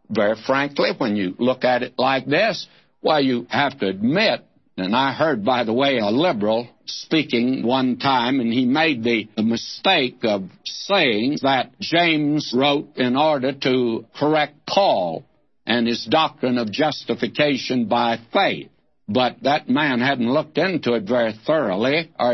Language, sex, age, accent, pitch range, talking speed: English, male, 60-79, American, 120-160 Hz, 155 wpm